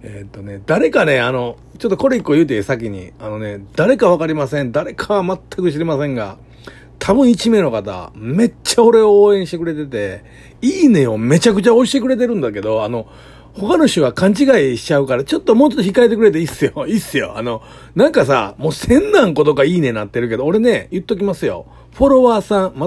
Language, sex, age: Japanese, male, 40-59